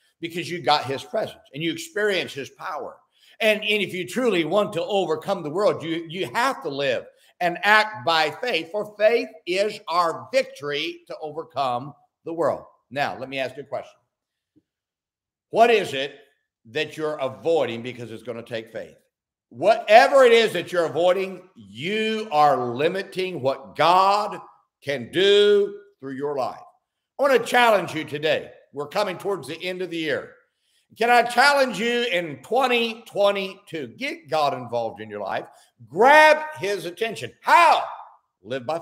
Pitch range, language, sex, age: 155-245 Hz, English, male, 60-79